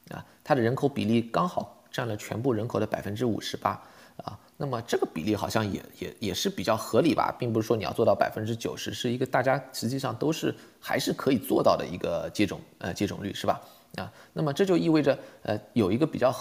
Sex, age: male, 20-39